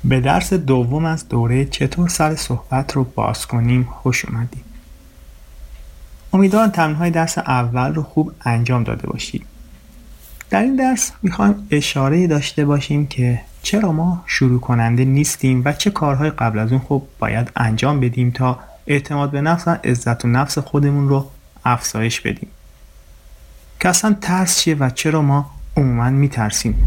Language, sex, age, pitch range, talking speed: Persian, male, 30-49, 110-150 Hz, 145 wpm